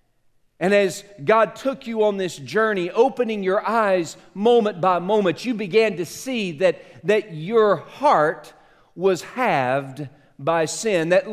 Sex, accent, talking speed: male, American, 145 wpm